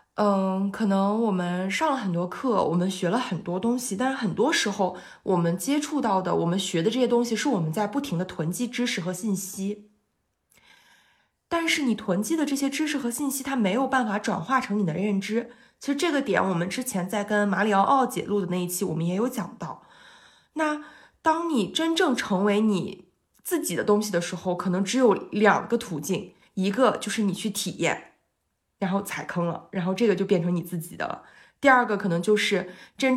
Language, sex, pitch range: Chinese, female, 185-240 Hz